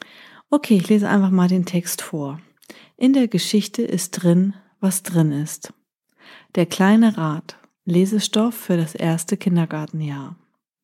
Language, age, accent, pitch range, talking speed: German, 40-59, German, 175-210 Hz, 135 wpm